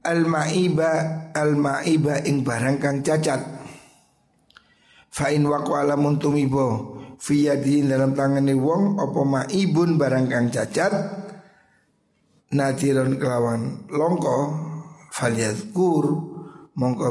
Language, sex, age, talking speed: Indonesian, male, 50-69, 90 wpm